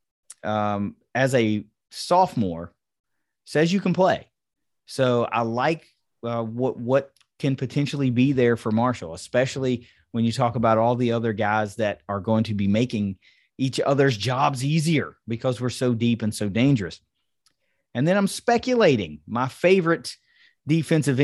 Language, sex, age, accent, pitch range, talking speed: English, male, 30-49, American, 105-135 Hz, 150 wpm